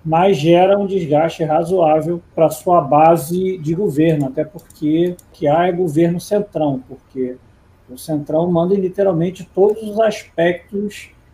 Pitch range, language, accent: 140-180 Hz, Portuguese, Brazilian